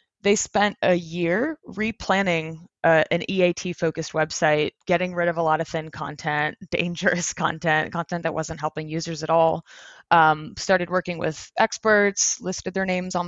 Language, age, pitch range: English, 20-39, 160-195 Hz